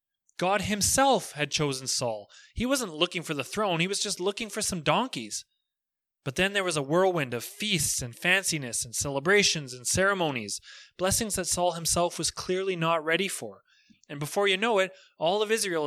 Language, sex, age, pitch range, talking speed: English, male, 30-49, 150-195 Hz, 185 wpm